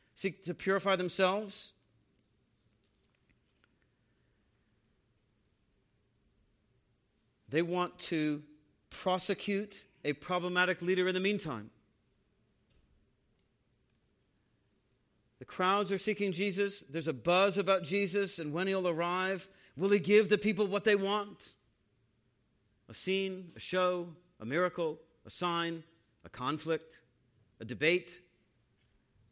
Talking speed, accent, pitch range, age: 100 wpm, American, 120-185 Hz, 50-69